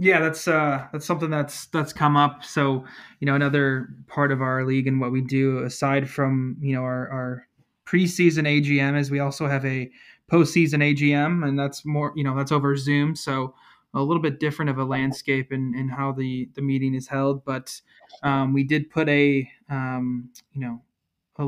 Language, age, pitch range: English, 20-39, 130-145 Hz